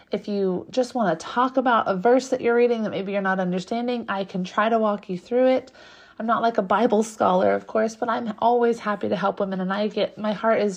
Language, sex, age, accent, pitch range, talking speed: English, female, 30-49, American, 190-225 Hz, 255 wpm